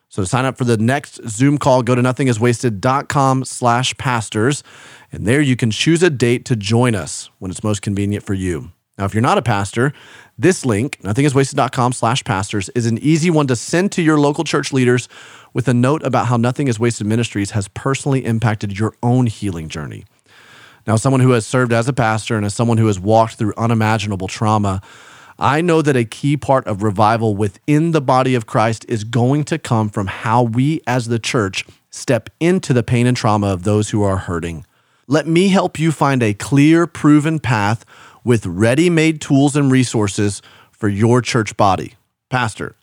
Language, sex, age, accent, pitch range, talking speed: English, male, 30-49, American, 110-135 Hz, 195 wpm